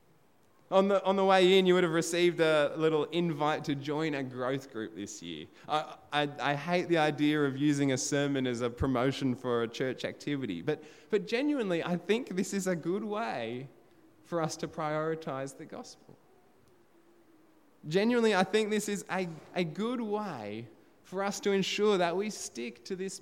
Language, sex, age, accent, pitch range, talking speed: English, male, 20-39, Australian, 120-175 Hz, 185 wpm